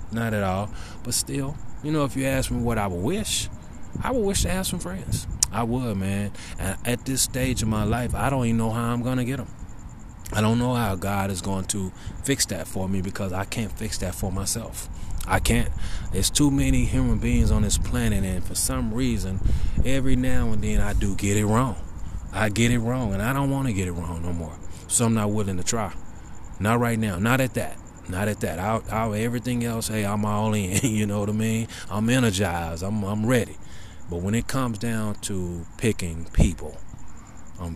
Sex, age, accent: male, 20-39, American